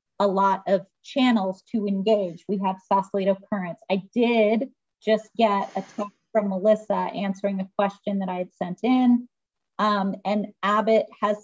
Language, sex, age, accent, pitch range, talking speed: English, female, 30-49, American, 195-225 Hz, 155 wpm